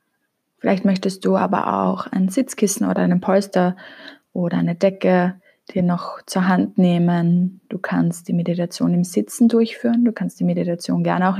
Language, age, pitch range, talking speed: German, 20-39, 175-220 Hz, 165 wpm